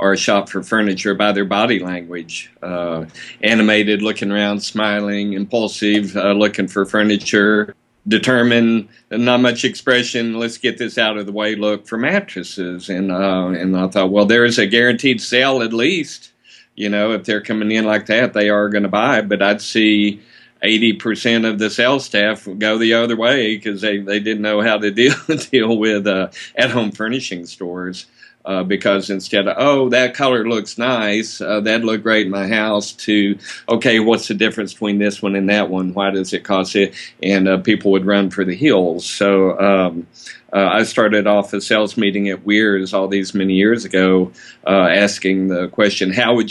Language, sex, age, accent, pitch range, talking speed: English, male, 50-69, American, 95-110 Hz, 190 wpm